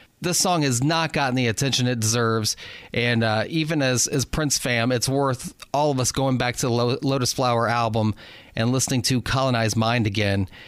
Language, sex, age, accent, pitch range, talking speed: English, male, 30-49, American, 115-140 Hz, 190 wpm